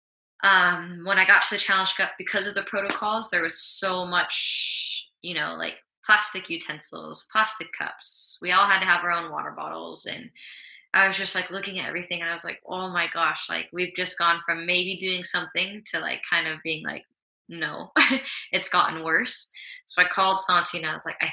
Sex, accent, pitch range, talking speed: female, American, 165-195 Hz, 205 wpm